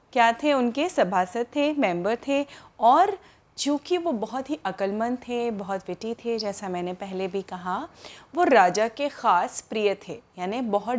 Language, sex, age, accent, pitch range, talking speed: Hindi, female, 30-49, native, 205-275 Hz, 165 wpm